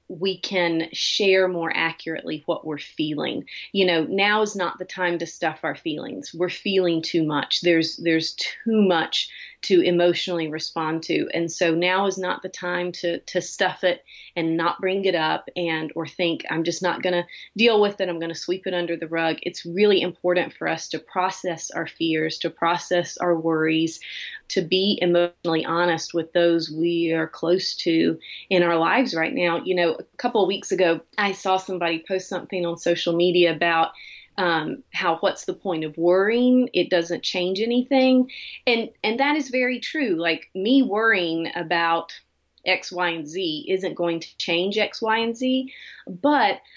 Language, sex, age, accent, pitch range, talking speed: English, female, 30-49, American, 165-195 Hz, 185 wpm